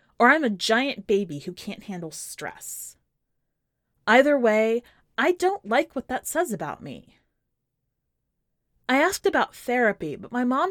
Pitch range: 165-245 Hz